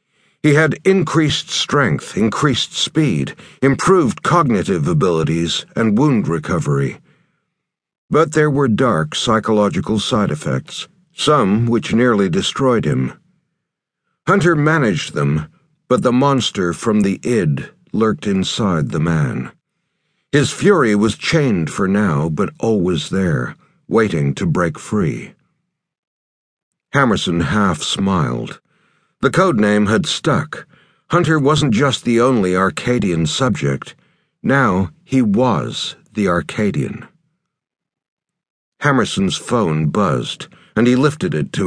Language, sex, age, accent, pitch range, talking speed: English, male, 60-79, American, 105-160 Hz, 110 wpm